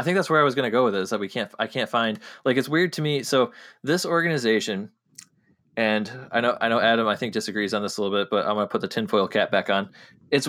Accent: American